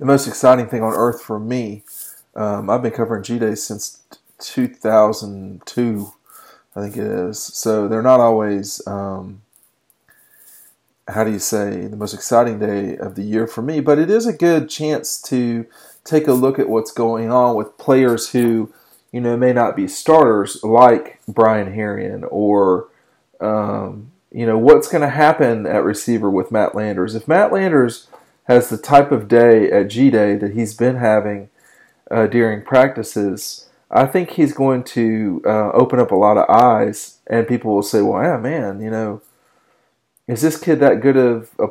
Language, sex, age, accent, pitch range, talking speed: English, male, 40-59, American, 105-135 Hz, 175 wpm